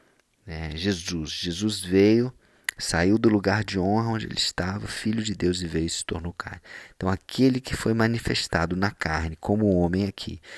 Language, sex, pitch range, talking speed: Portuguese, male, 85-105 Hz, 175 wpm